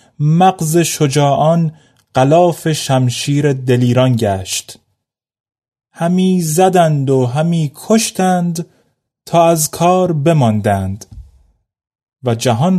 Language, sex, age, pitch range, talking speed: Persian, male, 30-49, 125-165 Hz, 80 wpm